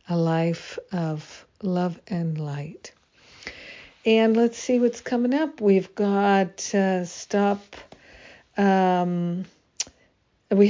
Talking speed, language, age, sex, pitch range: 100 wpm, English, 50-69, female, 175-205 Hz